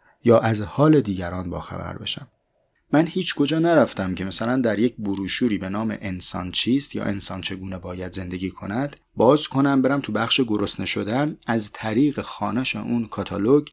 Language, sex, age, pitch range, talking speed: Persian, male, 30-49, 95-135 Hz, 165 wpm